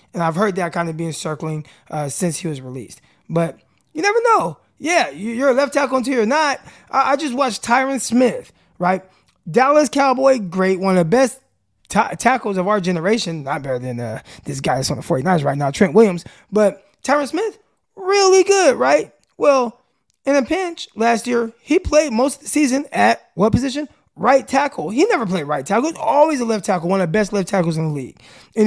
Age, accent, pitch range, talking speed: 20-39, American, 175-255 Hz, 205 wpm